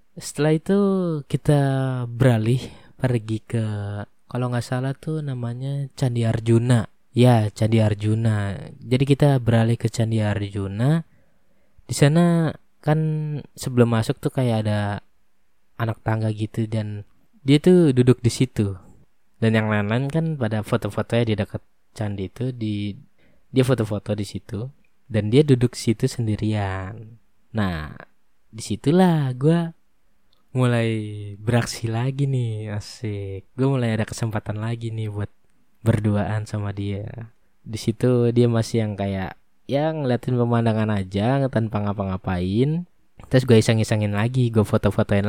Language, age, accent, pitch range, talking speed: Indonesian, 20-39, native, 105-130 Hz, 125 wpm